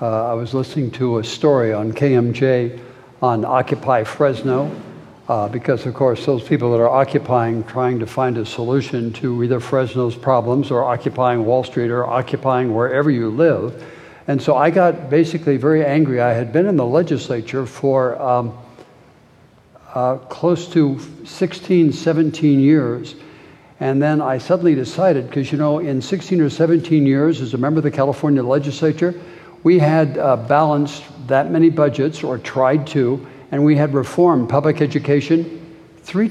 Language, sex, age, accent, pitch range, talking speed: English, male, 60-79, American, 130-160 Hz, 160 wpm